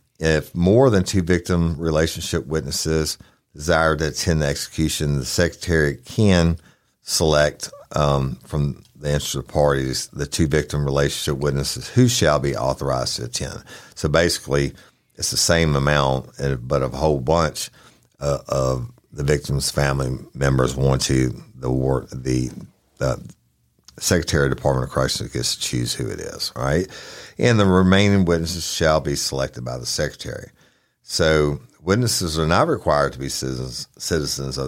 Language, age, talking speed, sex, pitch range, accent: English, 50-69, 150 wpm, male, 65-85 Hz, American